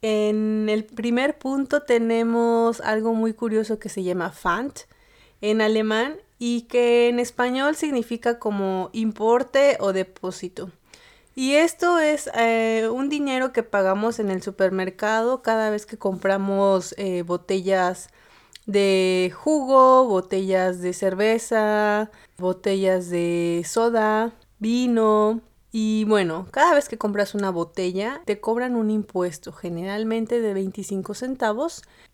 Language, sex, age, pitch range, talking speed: Spanish, female, 30-49, 195-240 Hz, 120 wpm